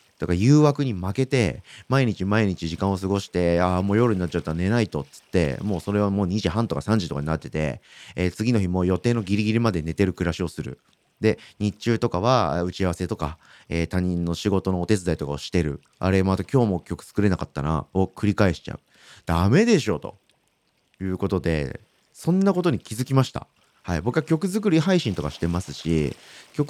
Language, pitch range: Japanese, 85-135 Hz